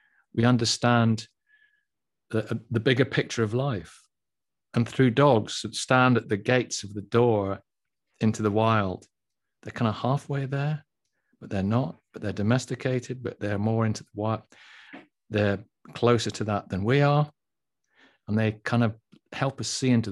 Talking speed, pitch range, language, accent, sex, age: 160 wpm, 105-135 Hz, English, British, male, 40-59